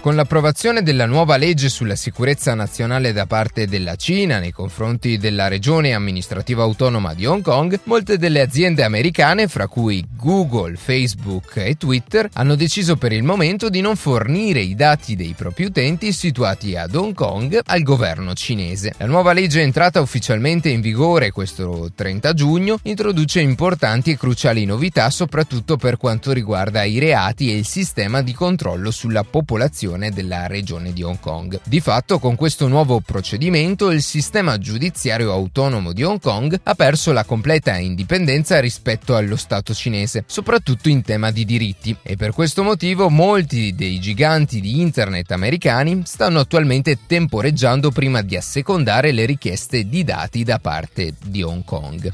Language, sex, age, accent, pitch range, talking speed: Italian, male, 30-49, native, 105-160 Hz, 155 wpm